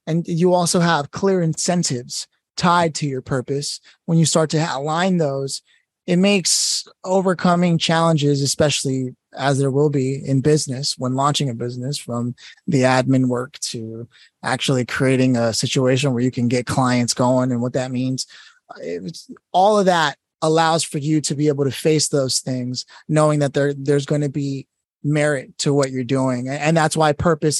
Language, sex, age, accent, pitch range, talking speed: English, male, 30-49, American, 135-170 Hz, 170 wpm